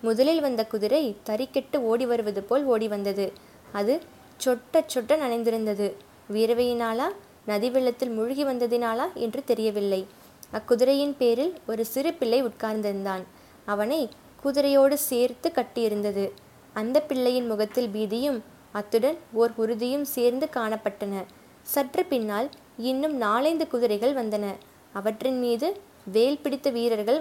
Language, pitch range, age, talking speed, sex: Tamil, 220-270 Hz, 20-39, 110 wpm, female